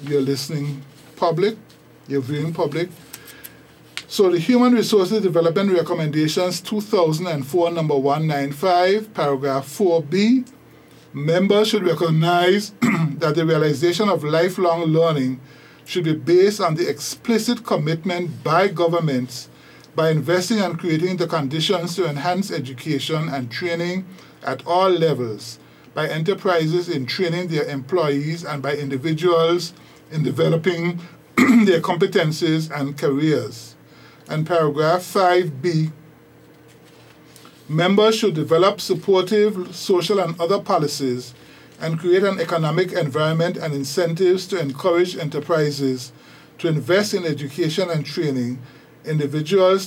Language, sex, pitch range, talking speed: English, male, 150-180 Hz, 110 wpm